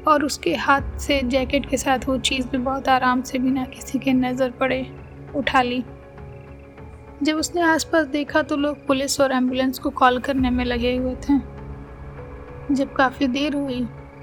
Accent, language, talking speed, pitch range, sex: native, Hindi, 170 wpm, 255-280 Hz, female